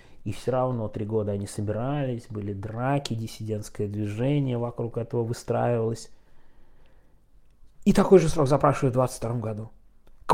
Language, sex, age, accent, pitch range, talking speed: Russian, male, 20-39, native, 105-140 Hz, 135 wpm